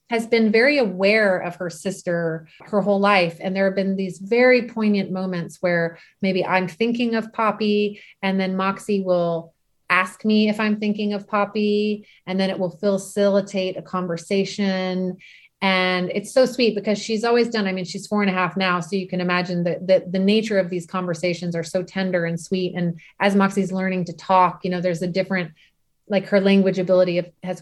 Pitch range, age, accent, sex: 180-205 Hz, 30-49, American, female